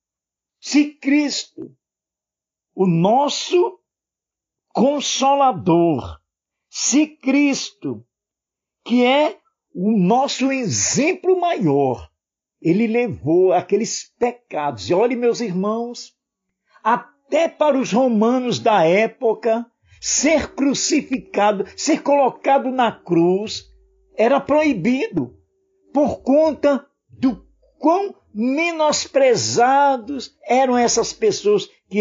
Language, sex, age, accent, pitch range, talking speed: Portuguese, male, 60-79, Brazilian, 210-300 Hz, 80 wpm